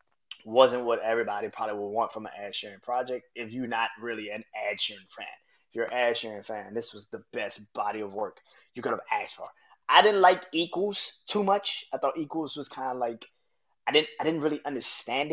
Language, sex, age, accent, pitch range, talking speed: English, male, 20-39, American, 110-150 Hz, 210 wpm